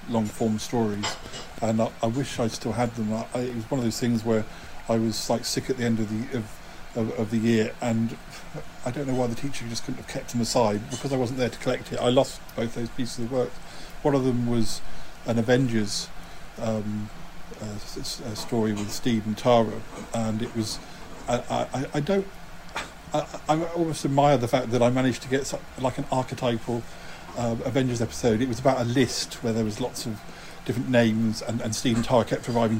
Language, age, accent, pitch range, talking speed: English, 50-69, British, 110-130 Hz, 215 wpm